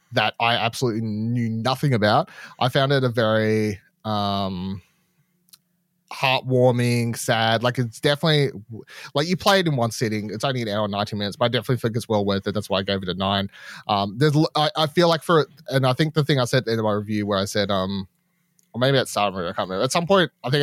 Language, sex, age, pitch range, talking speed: English, male, 30-49, 105-145 Hz, 235 wpm